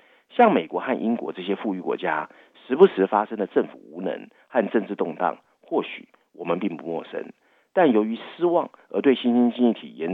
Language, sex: Chinese, male